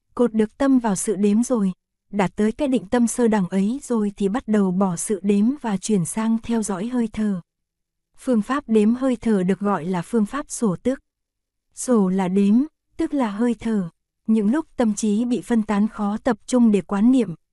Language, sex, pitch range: Korean, female, 200-240 Hz